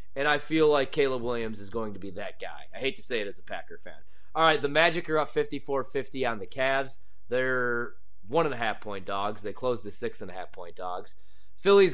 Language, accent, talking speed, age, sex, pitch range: English, American, 200 wpm, 30-49, male, 105-145 Hz